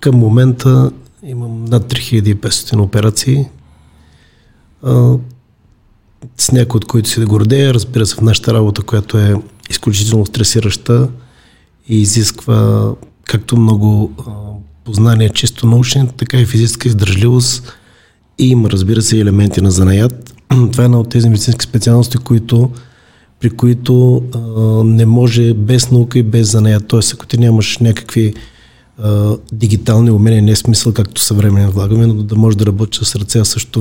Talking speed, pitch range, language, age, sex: 135 wpm, 105-120 Hz, Bulgarian, 40-59, male